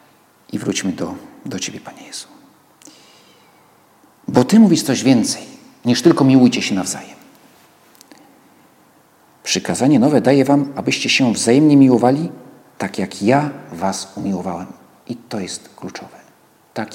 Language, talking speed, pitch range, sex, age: Polish, 125 wpm, 110-165 Hz, male, 50-69